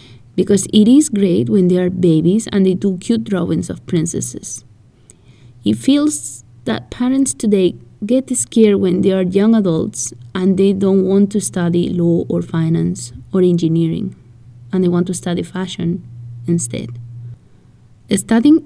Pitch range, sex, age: 170-215 Hz, female, 20-39